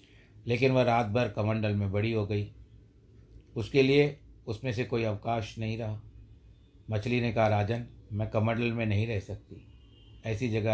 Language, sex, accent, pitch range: Hindi, male, native, 105-120 Hz